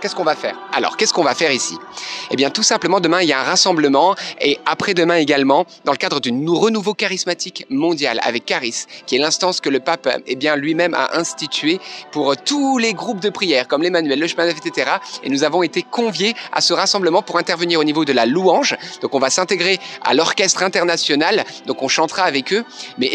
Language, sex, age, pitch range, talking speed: French, male, 30-49, 160-205 Hz, 215 wpm